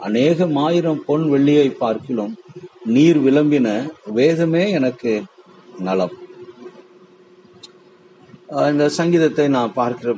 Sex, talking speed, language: male, 75 wpm, Tamil